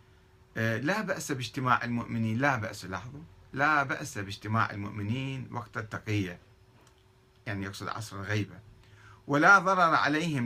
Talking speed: 115 wpm